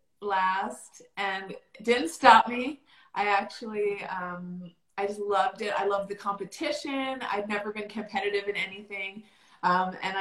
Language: English